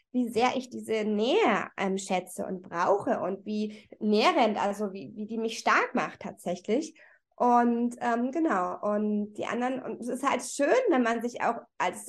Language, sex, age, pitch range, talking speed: German, female, 20-39, 215-265 Hz, 180 wpm